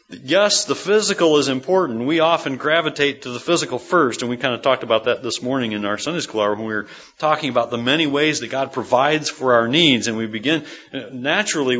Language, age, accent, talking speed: English, 40-59, American, 225 wpm